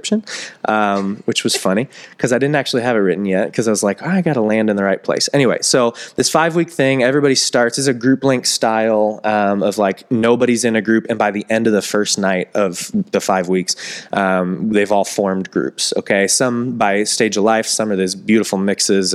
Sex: male